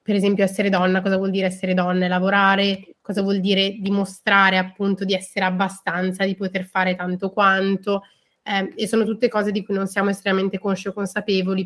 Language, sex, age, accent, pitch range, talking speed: Italian, female, 20-39, native, 185-210 Hz, 185 wpm